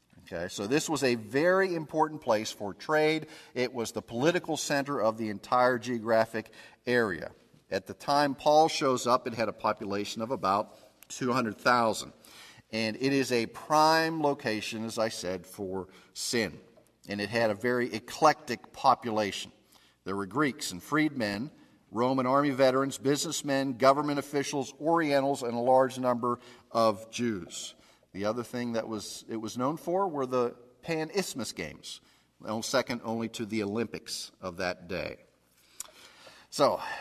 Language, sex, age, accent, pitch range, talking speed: English, male, 50-69, American, 110-140 Hz, 150 wpm